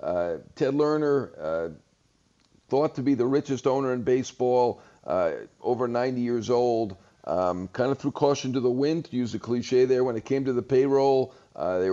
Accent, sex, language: American, male, English